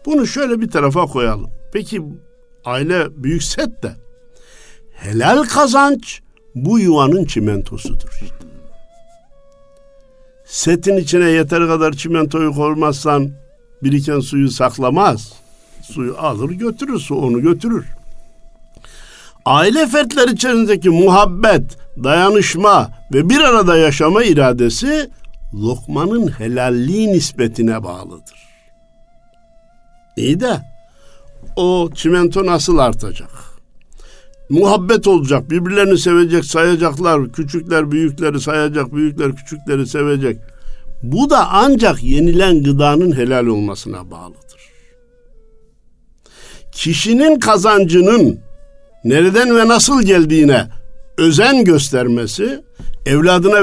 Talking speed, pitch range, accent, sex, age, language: 90 wpm, 135-215 Hz, native, male, 60-79, Turkish